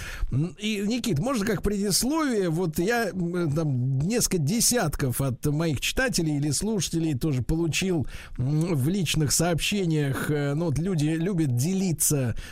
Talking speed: 110 wpm